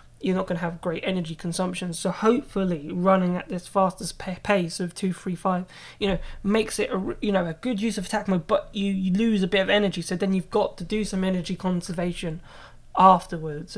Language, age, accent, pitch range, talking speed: English, 20-39, British, 180-200 Hz, 220 wpm